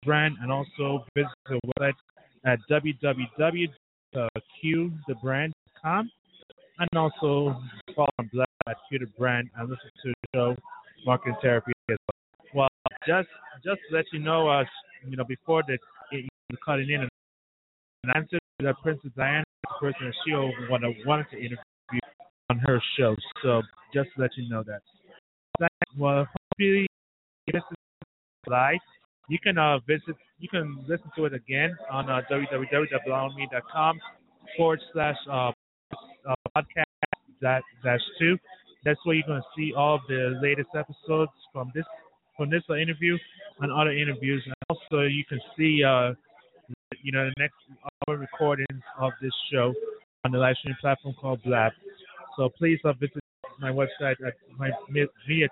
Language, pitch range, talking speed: English, 130-160 Hz, 150 wpm